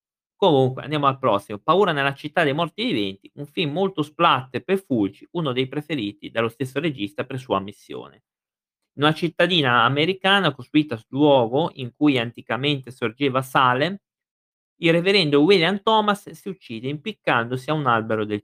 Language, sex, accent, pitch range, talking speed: Italian, male, native, 120-170 Hz, 155 wpm